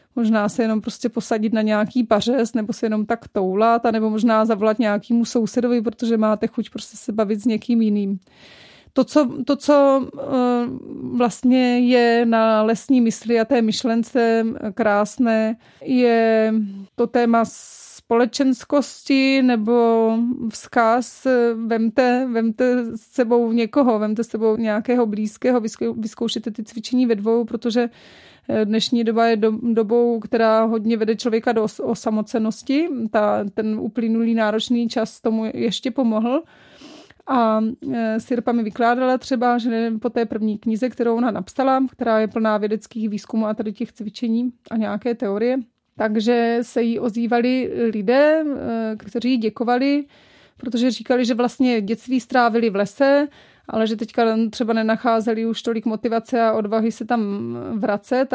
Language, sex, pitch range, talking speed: Czech, female, 220-245 Hz, 135 wpm